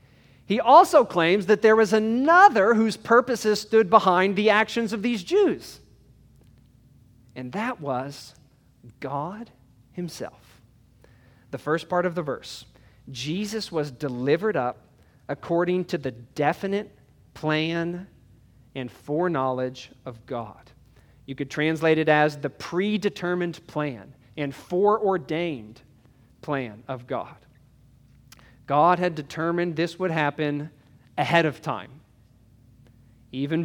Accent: American